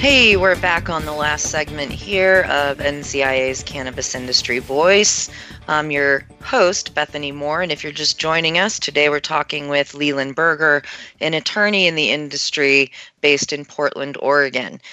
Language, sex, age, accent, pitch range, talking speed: English, female, 30-49, American, 140-170 Hz, 155 wpm